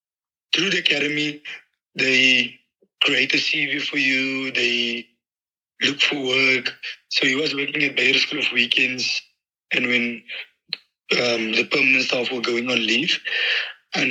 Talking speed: 140 wpm